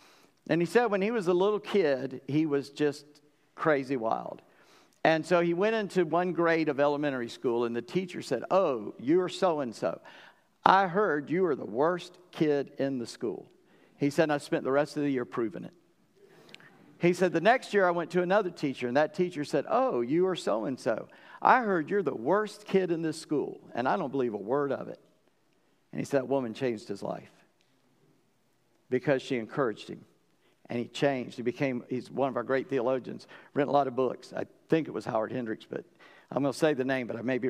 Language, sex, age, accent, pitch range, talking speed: English, male, 50-69, American, 135-175 Hz, 215 wpm